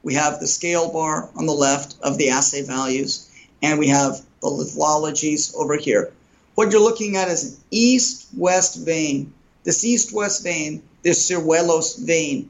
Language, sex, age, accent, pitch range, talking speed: English, male, 50-69, American, 145-180 Hz, 160 wpm